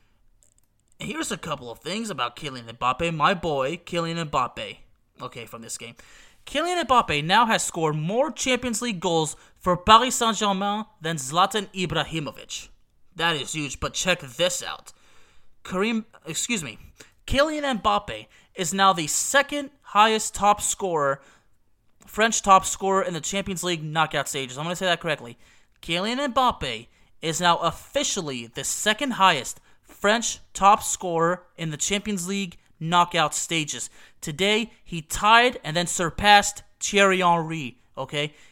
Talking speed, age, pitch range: 140 wpm, 30-49, 150-205 Hz